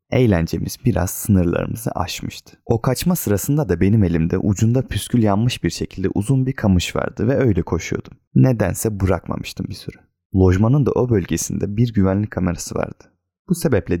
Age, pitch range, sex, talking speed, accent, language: 30-49, 90-115 Hz, male, 155 wpm, native, Turkish